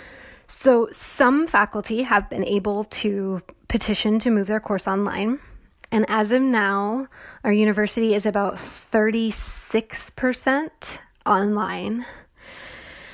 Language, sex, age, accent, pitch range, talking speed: English, female, 20-39, American, 200-230 Hz, 105 wpm